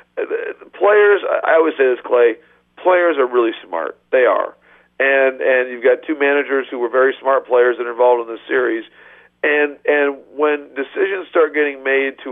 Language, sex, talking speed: English, male, 190 wpm